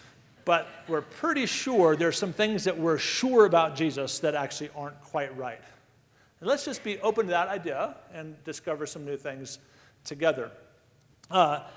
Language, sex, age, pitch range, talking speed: English, male, 50-69, 145-185 Hz, 165 wpm